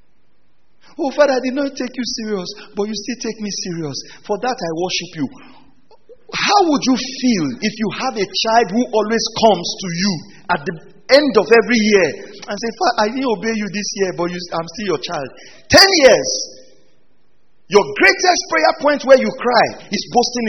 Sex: male